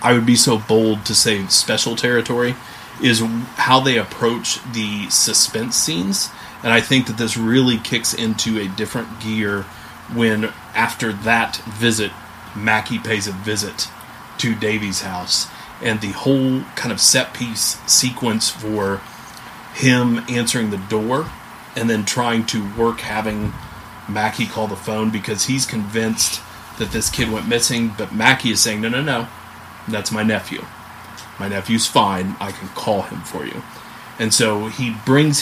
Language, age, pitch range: English, 30-49, 105-120 Hz